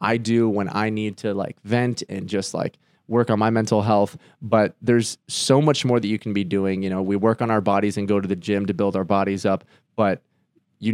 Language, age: English, 20-39